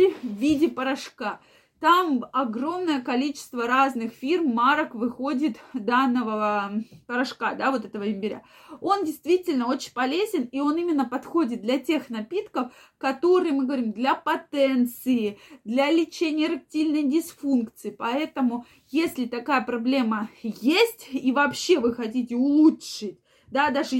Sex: female